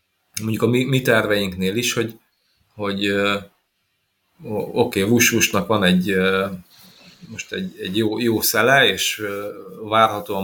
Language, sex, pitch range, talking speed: Hungarian, male, 100-115 Hz, 115 wpm